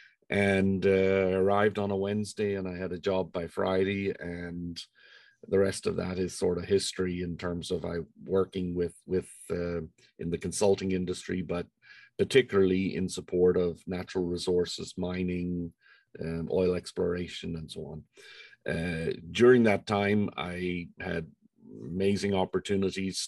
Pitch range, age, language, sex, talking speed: 90-100 Hz, 50-69, English, male, 145 wpm